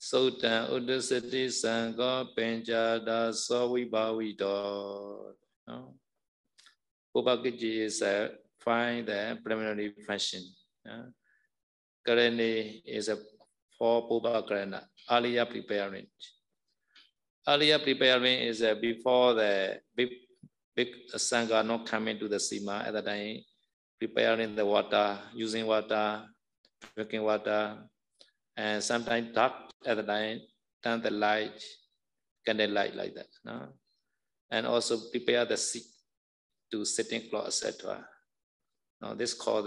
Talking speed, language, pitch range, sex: 115 wpm, Vietnamese, 105-120 Hz, male